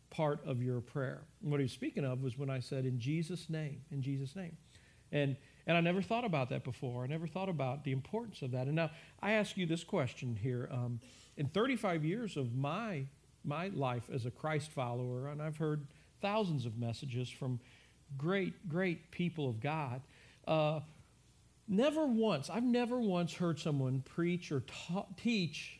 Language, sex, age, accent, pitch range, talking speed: English, male, 50-69, American, 135-190 Hz, 185 wpm